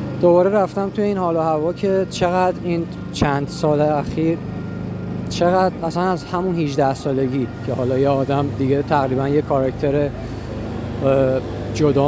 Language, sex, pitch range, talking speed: Persian, male, 115-155 Hz, 130 wpm